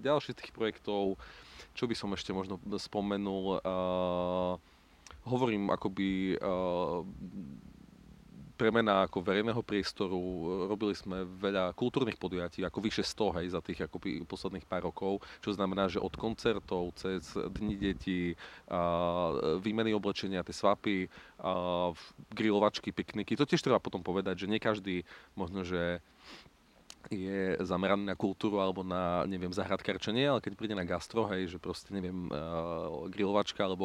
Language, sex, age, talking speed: Slovak, male, 30-49, 135 wpm